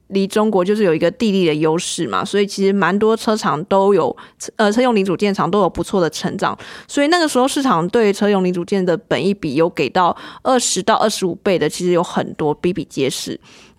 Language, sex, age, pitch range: Chinese, female, 20-39, 180-220 Hz